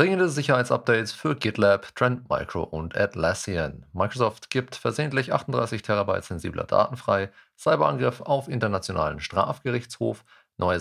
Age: 40-59